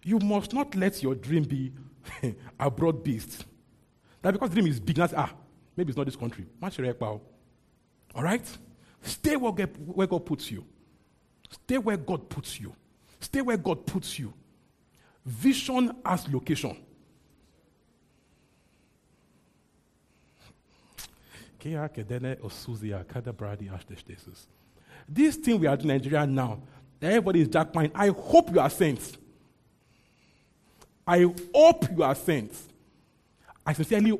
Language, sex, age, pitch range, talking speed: English, male, 50-69, 115-175 Hz, 120 wpm